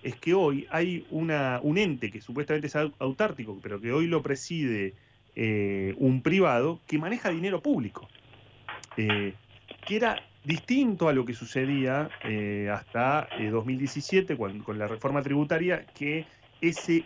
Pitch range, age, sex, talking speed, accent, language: 110-155 Hz, 30-49, male, 140 wpm, Argentinian, Spanish